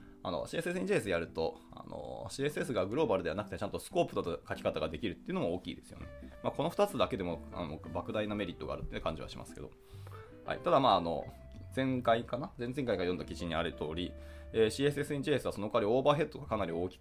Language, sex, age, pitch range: Japanese, male, 20-39, 85-135 Hz